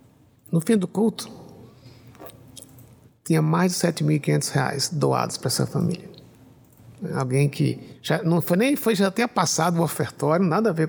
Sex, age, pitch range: male, 60-79, 135-180 Hz